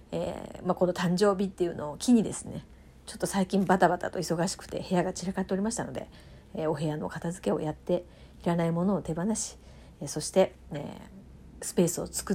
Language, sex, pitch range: Japanese, female, 155-205 Hz